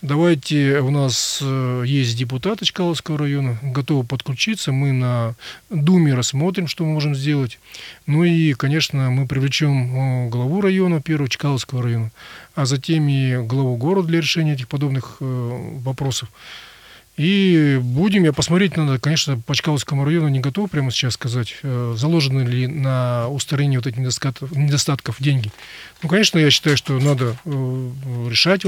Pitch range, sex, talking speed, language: 130-160 Hz, male, 140 wpm, Russian